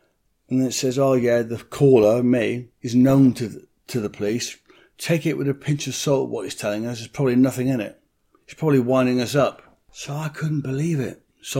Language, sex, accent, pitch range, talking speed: English, male, British, 125-145 Hz, 220 wpm